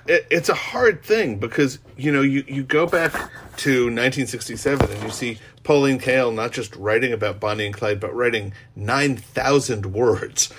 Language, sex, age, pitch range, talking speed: English, male, 40-59, 115-135 Hz, 165 wpm